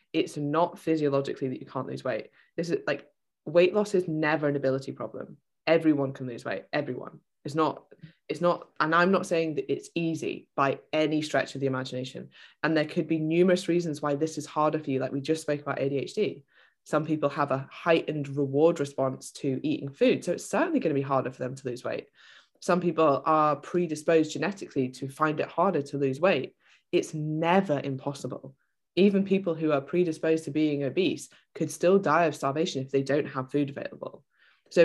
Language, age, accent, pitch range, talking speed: English, 20-39, British, 140-165 Hz, 195 wpm